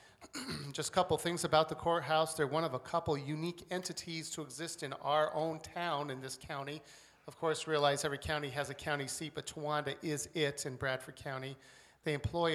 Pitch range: 140-160 Hz